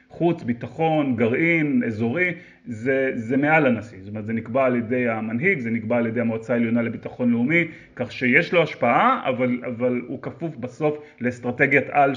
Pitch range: 120-150 Hz